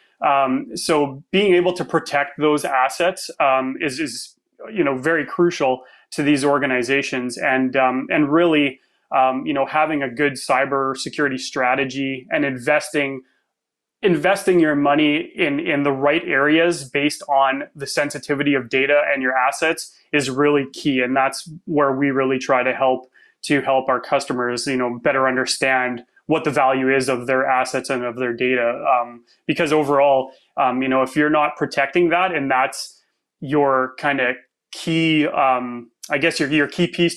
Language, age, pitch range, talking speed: English, 20-39, 130-155 Hz, 170 wpm